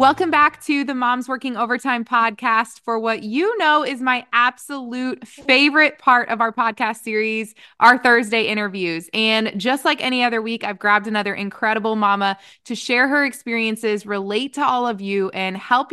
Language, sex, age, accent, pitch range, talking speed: English, female, 20-39, American, 200-250 Hz, 175 wpm